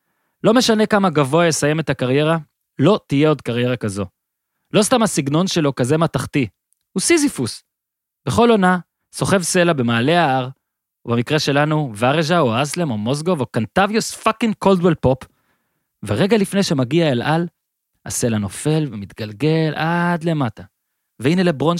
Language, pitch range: Hebrew, 135-190 Hz